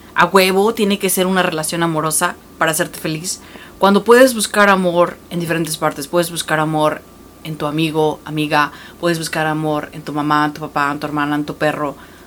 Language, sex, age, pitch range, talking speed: English, female, 30-49, 170-220 Hz, 195 wpm